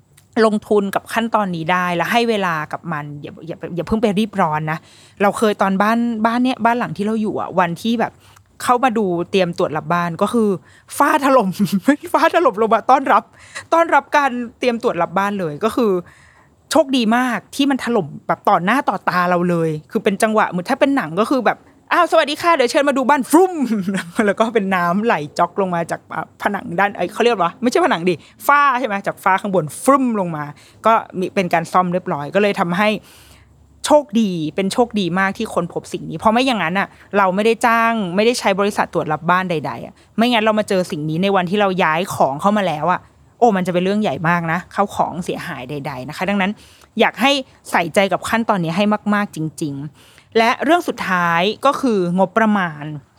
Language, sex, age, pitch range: Thai, female, 20-39, 175-235 Hz